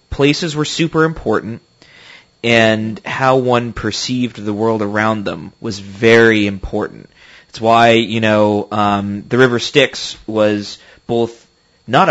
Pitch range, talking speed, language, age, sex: 105-120 Hz, 130 wpm, English, 20-39, male